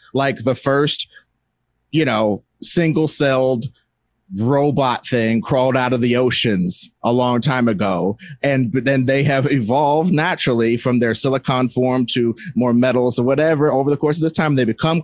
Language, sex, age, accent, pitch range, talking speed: English, male, 30-49, American, 120-160 Hz, 160 wpm